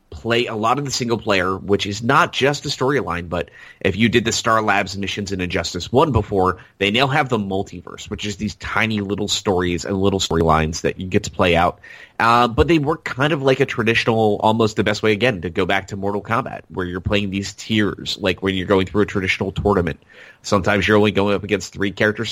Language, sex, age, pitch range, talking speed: English, male, 30-49, 95-110 Hz, 230 wpm